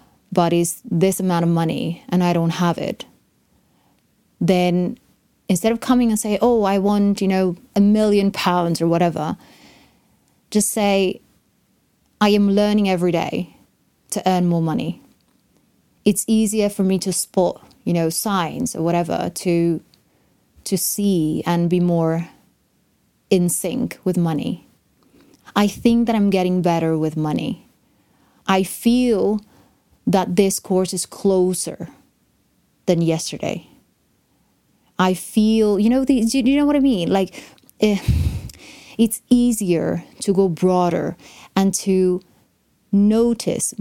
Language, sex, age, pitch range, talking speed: English, female, 30-49, 170-215 Hz, 130 wpm